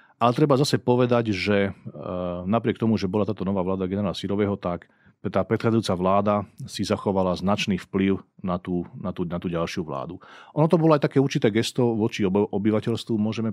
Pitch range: 95-115 Hz